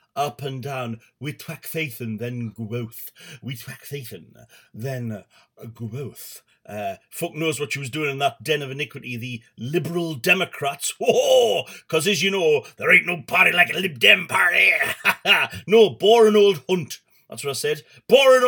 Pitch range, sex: 125-170 Hz, male